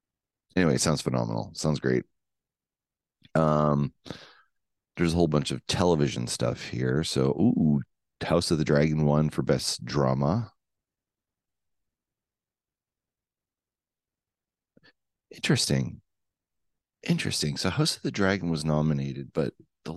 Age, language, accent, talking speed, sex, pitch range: 30-49, English, American, 110 wpm, male, 65-75 Hz